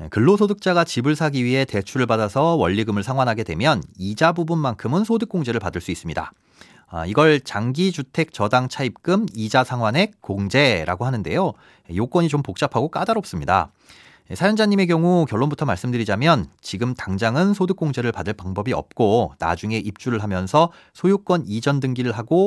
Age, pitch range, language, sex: 30-49, 110-175 Hz, Korean, male